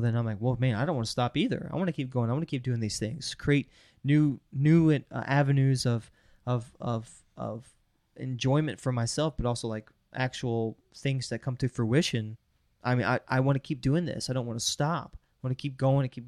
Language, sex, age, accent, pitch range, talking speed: English, male, 20-39, American, 115-145 Hz, 235 wpm